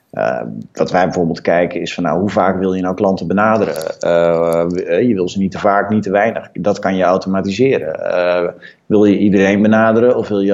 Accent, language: Dutch, Dutch